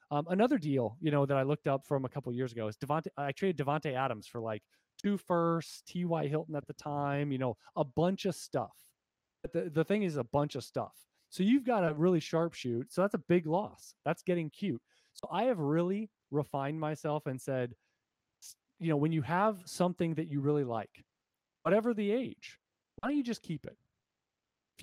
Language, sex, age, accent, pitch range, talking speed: English, male, 30-49, American, 130-175 Hz, 215 wpm